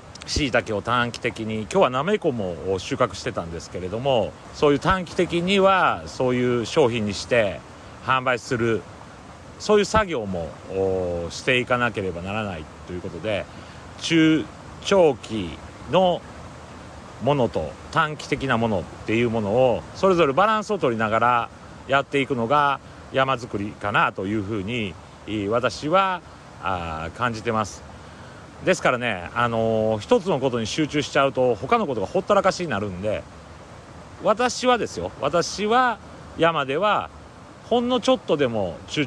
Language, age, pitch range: Japanese, 40-59, 100-155 Hz